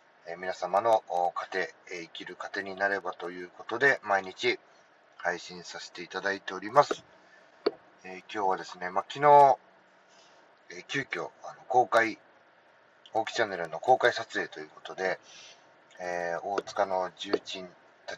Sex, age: male, 30-49